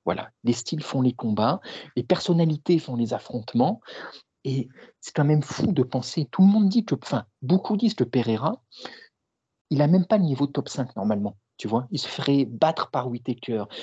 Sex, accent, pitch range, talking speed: male, French, 135-185 Hz, 200 wpm